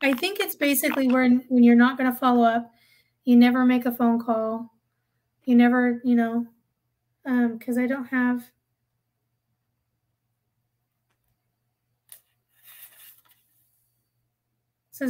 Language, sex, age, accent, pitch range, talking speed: English, female, 30-49, American, 230-265 Hz, 105 wpm